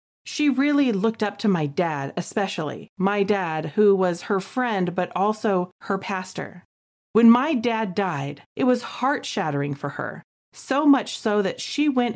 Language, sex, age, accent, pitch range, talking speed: English, female, 40-59, American, 180-235 Hz, 170 wpm